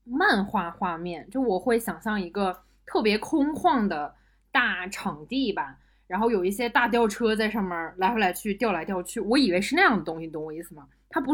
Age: 20-39